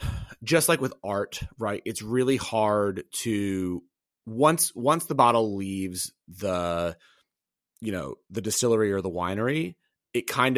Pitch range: 100-120 Hz